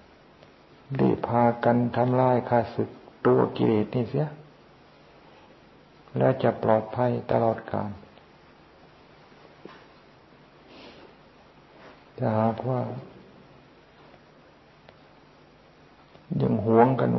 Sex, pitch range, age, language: male, 105-120 Hz, 60-79, Thai